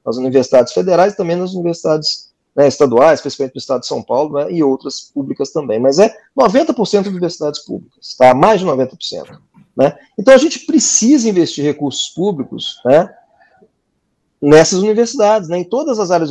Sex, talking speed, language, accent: male, 170 wpm, Portuguese, Brazilian